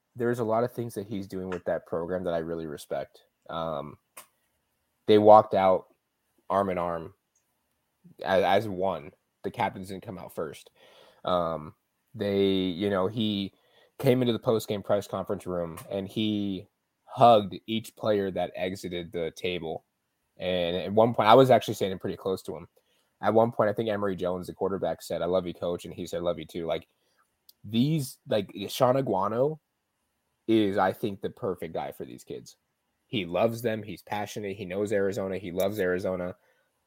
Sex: male